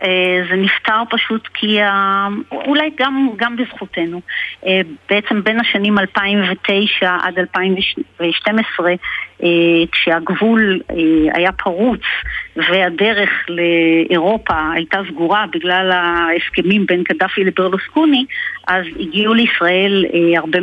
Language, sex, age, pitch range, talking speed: Hebrew, female, 40-59, 175-220 Hz, 90 wpm